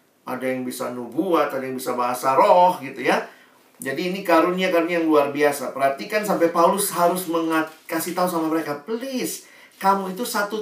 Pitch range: 140-195 Hz